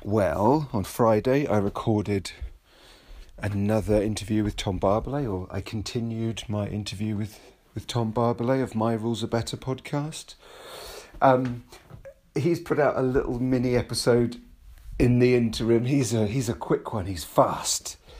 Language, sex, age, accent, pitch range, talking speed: English, male, 40-59, British, 95-125 Hz, 145 wpm